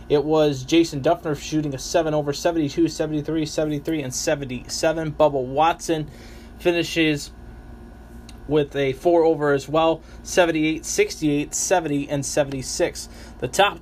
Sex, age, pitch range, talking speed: male, 20-39, 145-170 Hz, 125 wpm